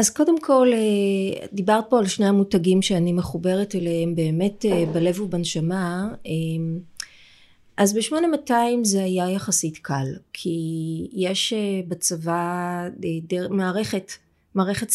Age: 20-39